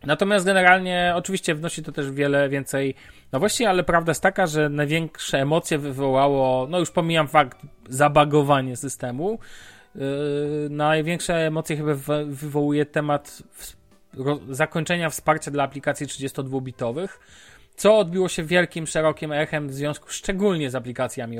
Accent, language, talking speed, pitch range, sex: native, Polish, 130 wpm, 135-175 Hz, male